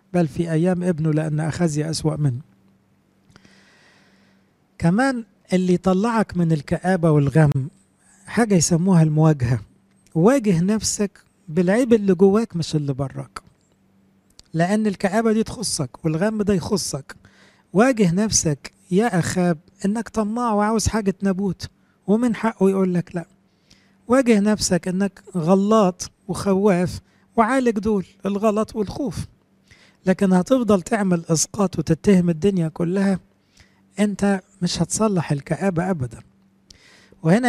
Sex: male